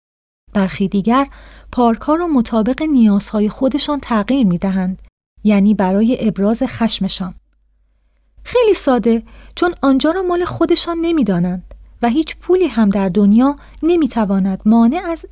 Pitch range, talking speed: 200-260 Hz, 120 wpm